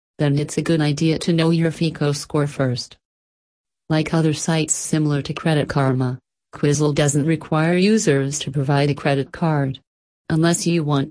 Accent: American